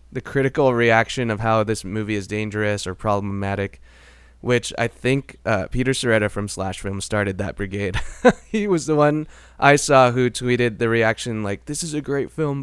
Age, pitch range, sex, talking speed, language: 20-39, 95-120 Hz, male, 185 wpm, English